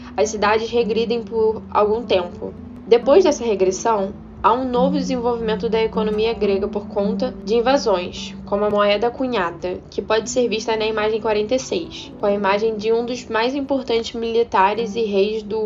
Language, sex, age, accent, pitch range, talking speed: Portuguese, female, 10-29, Brazilian, 205-235 Hz, 165 wpm